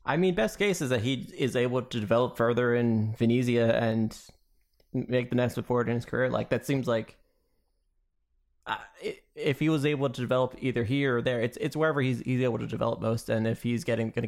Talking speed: 215 wpm